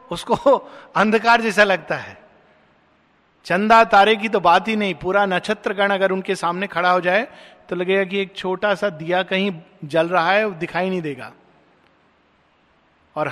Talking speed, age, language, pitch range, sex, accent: 165 wpm, 50-69, Hindi, 160-210 Hz, male, native